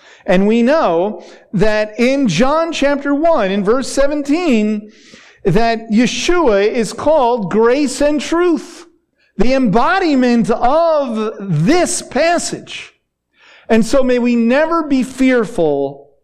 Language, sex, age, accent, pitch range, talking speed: English, male, 50-69, American, 185-265 Hz, 110 wpm